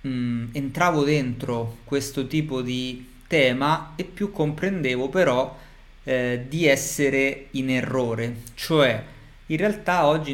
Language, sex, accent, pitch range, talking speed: Italian, male, native, 125-160 Hz, 115 wpm